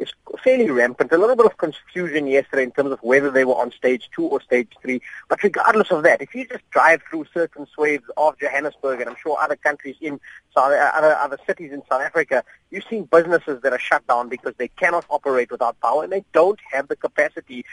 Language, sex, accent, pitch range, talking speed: English, male, Indian, 135-190 Hz, 225 wpm